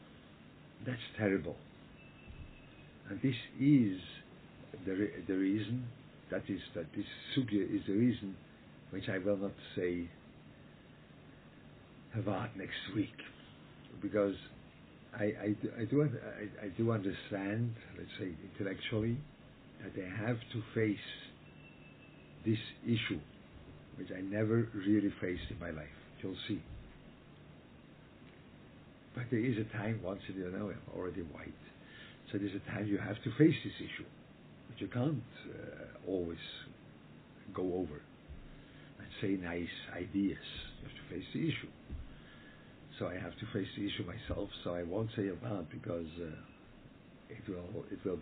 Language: English